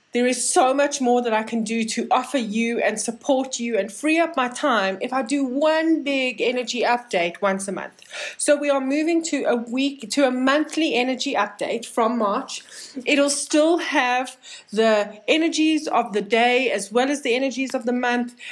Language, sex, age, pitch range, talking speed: English, female, 30-49, 225-285 Hz, 195 wpm